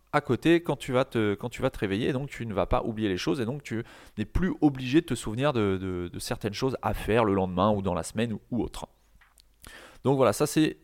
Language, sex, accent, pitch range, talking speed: French, male, French, 105-145 Hz, 265 wpm